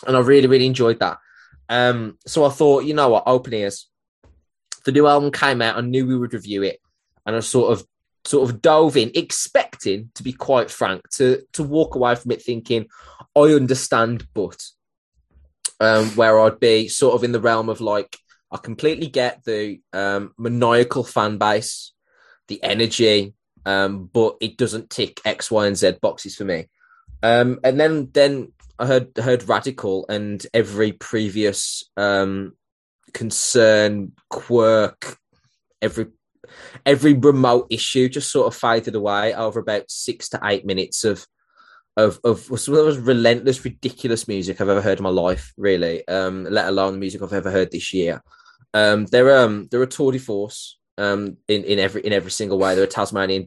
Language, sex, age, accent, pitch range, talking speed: English, male, 20-39, British, 100-125 Hz, 180 wpm